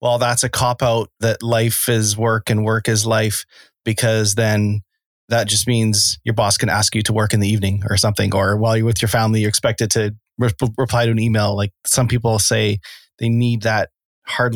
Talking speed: 210 wpm